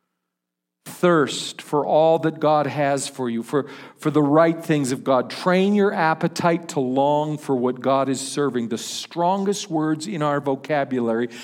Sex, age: male, 50-69